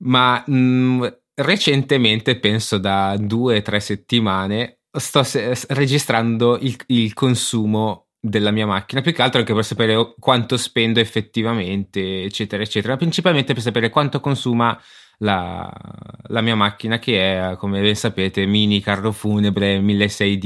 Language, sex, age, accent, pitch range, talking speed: Italian, male, 20-39, native, 105-125 Hz, 135 wpm